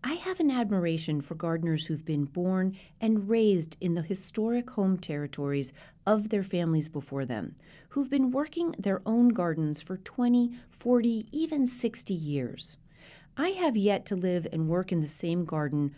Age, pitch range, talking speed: 40-59, 150-230 Hz, 165 wpm